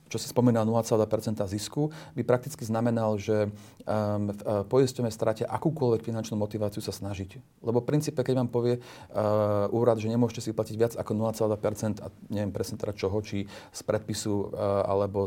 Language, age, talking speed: Slovak, 30-49, 155 wpm